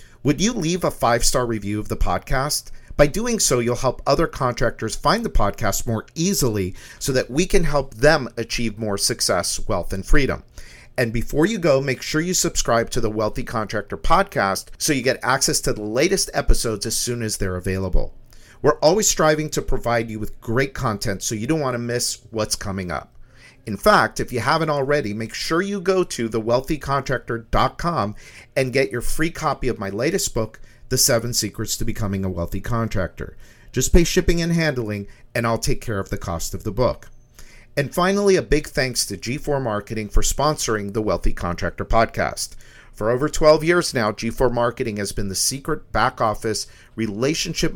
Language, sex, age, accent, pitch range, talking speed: English, male, 50-69, American, 110-145 Hz, 185 wpm